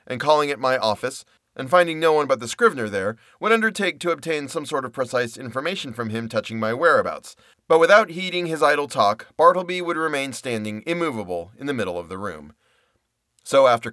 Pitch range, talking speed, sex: 115-150 Hz, 200 wpm, male